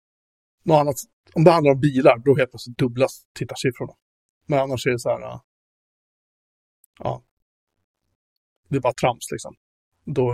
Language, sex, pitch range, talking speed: Swedish, male, 115-140 Hz, 140 wpm